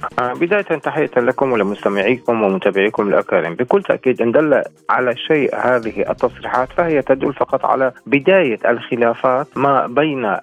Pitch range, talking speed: 115-150 Hz, 120 wpm